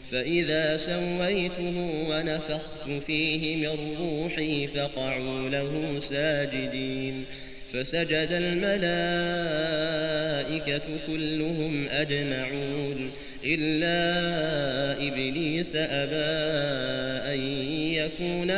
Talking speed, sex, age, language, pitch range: 60 wpm, male, 30-49, Arabic, 140-170 Hz